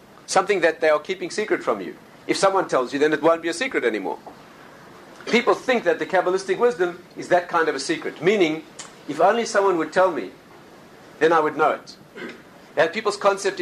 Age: 50-69